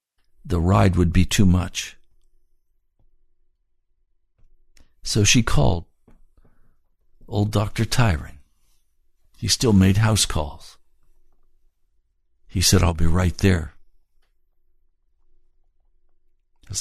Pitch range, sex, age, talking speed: 70-95 Hz, male, 60-79, 85 wpm